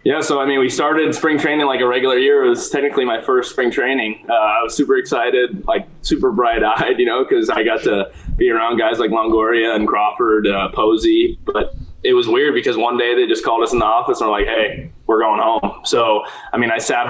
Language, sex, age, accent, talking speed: English, male, 20-39, American, 240 wpm